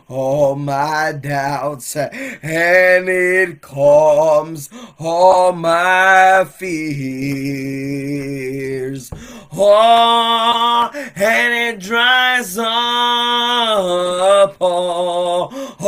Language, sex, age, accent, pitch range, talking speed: English, male, 20-39, American, 185-235 Hz, 55 wpm